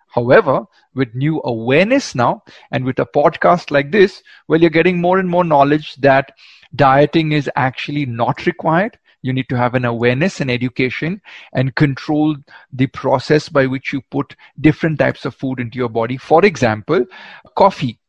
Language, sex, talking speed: Hindi, male, 170 wpm